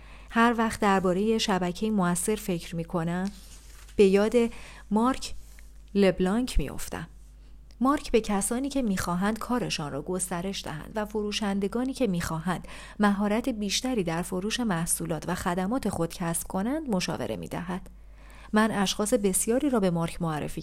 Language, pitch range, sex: Persian, 170-240 Hz, female